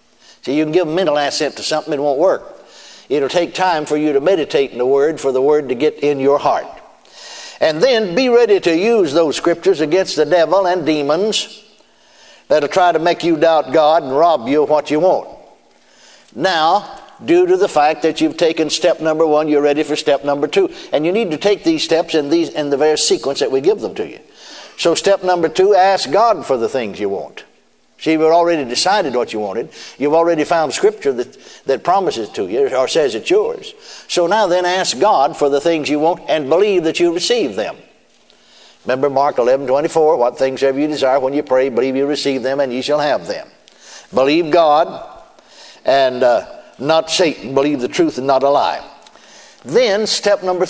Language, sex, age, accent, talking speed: English, male, 60-79, American, 210 wpm